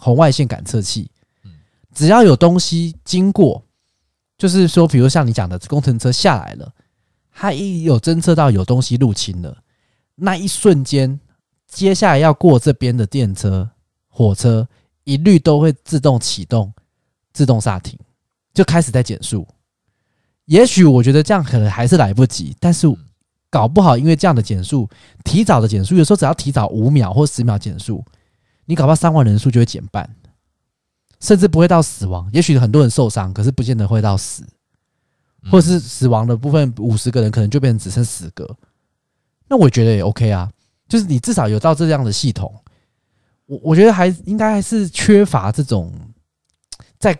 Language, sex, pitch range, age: Chinese, male, 105-160 Hz, 20-39